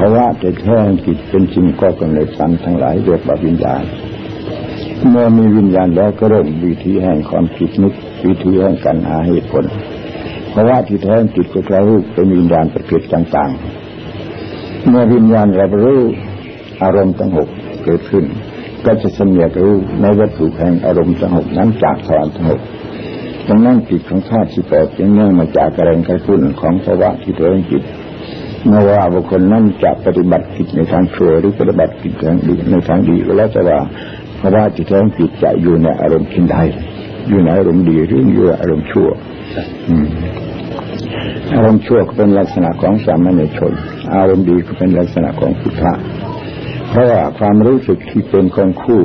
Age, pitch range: 60-79, 85-105 Hz